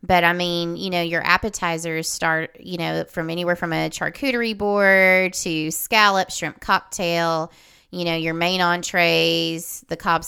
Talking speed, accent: 160 wpm, American